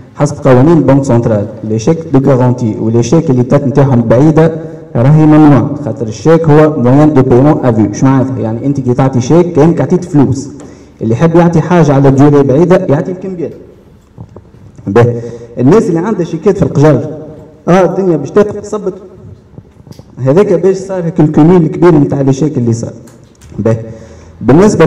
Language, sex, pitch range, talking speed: Arabic, male, 125-165 Hz, 150 wpm